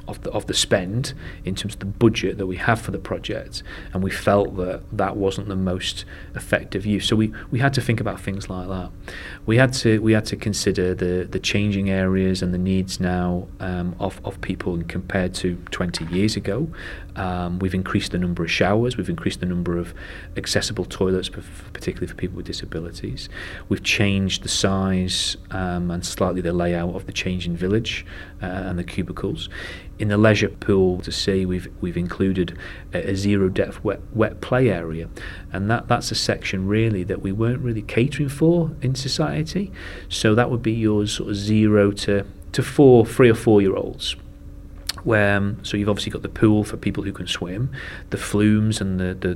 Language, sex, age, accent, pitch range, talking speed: English, male, 30-49, British, 90-105 Hz, 195 wpm